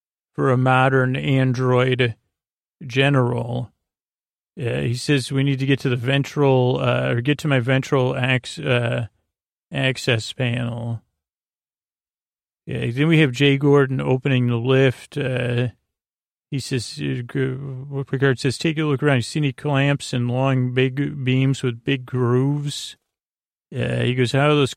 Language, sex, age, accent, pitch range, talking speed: English, male, 40-59, American, 125-135 Hz, 150 wpm